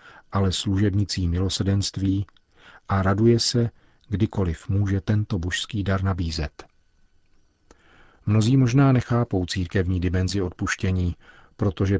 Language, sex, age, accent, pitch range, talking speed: Czech, male, 40-59, native, 90-105 Hz, 95 wpm